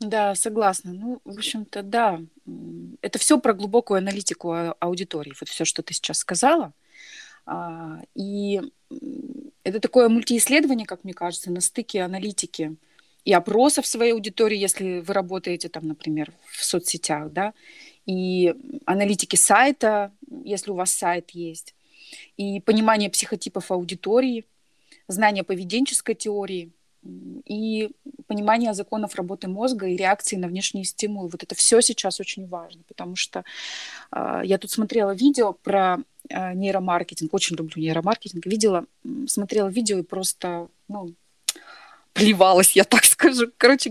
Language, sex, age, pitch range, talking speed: Russian, female, 30-49, 185-235 Hz, 130 wpm